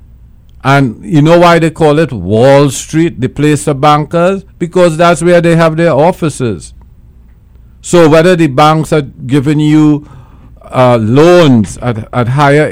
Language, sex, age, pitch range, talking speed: English, male, 50-69, 120-150 Hz, 150 wpm